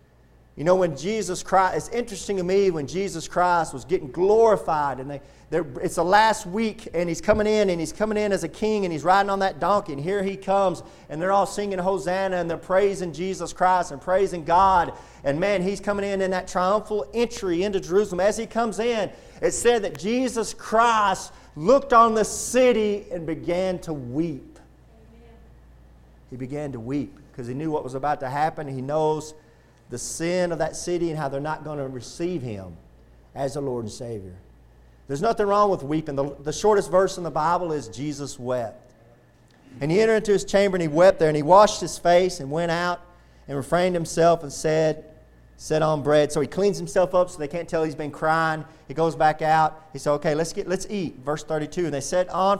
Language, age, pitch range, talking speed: English, 40-59, 150-195 Hz, 210 wpm